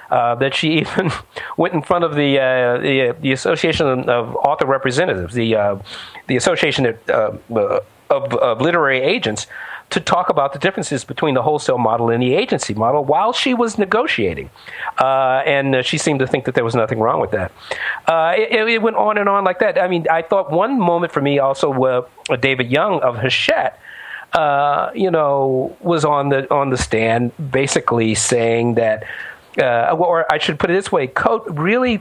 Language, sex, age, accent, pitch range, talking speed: English, male, 50-69, American, 130-185 Hz, 190 wpm